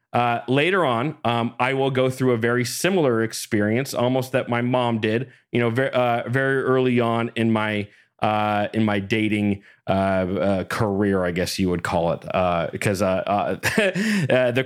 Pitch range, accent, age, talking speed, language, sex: 110-140 Hz, American, 30-49, 170 wpm, English, male